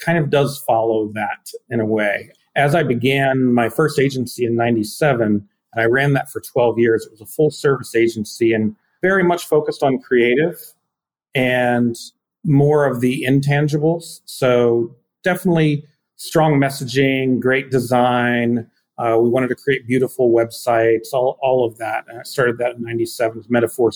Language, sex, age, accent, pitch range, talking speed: English, male, 40-59, American, 115-140 Hz, 165 wpm